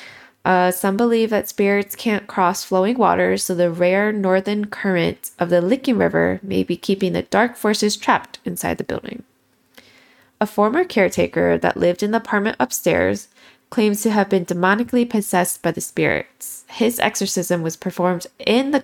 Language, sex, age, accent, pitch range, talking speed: English, female, 20-39, American, 180-225 Hz, 165 wpm